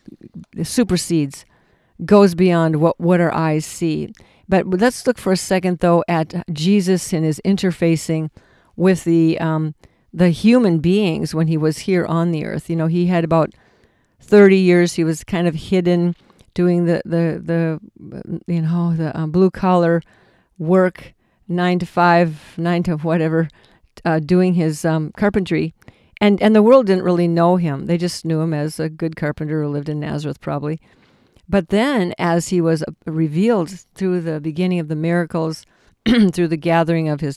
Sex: female